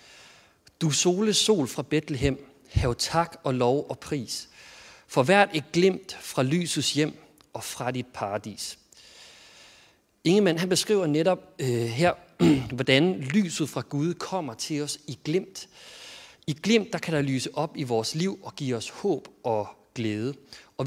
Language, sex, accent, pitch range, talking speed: Danish, male, native, 130-175 Hz, 160 wpm